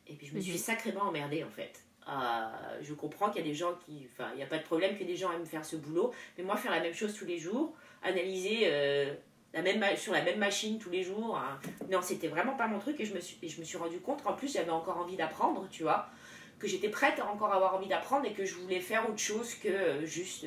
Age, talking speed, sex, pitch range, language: 30-49, 280 wpm, female, 165-220 Hz, French